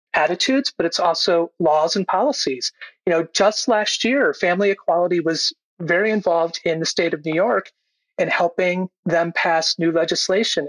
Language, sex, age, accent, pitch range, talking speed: English, male, 40-59, American, 165-205 Hz, 165 wpm